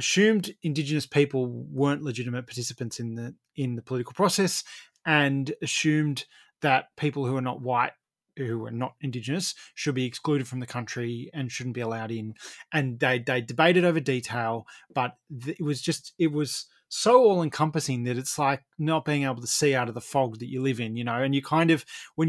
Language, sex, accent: English, male, Australian